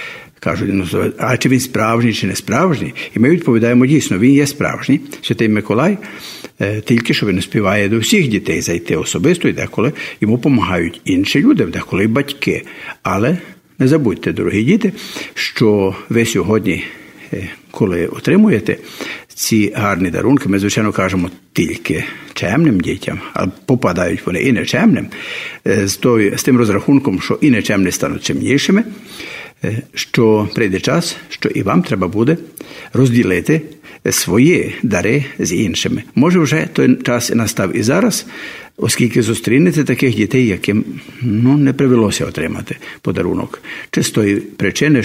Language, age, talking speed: Ukrainian, 60-79, 135 wpm